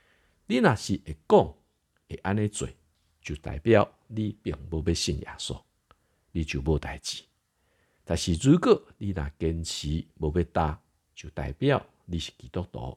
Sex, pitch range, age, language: male, 80-105 Hz, 50-69, Chinese